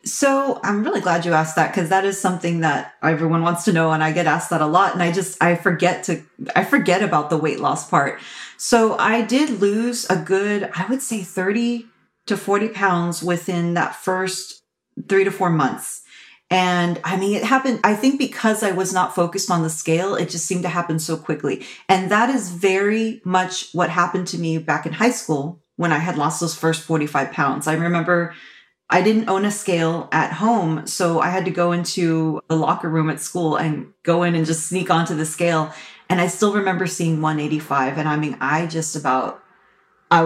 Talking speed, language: 210 wpm, English